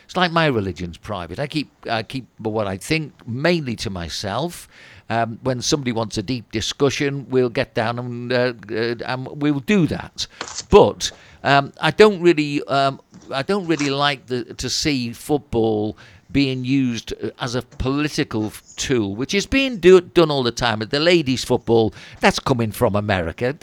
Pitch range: 115-145 Hz